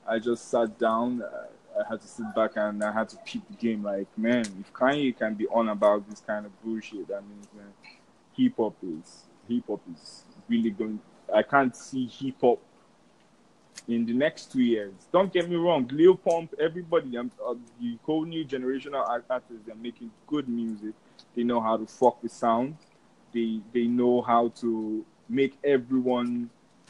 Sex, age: male, 20-39